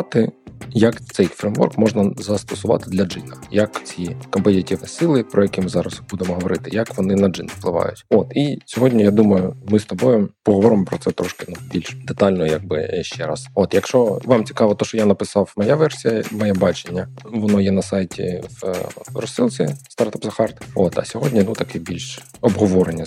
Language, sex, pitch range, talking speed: Ukrainian, male, 90-110 Hz, 180 wpm